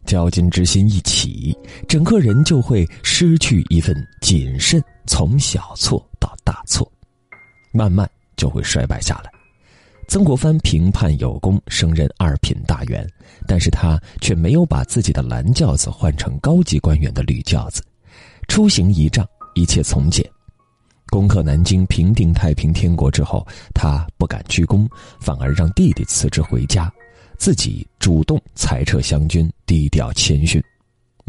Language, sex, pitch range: Chinese, male, 80-115 Hz